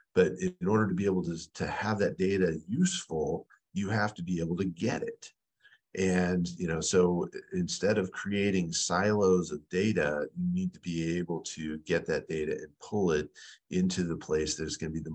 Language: English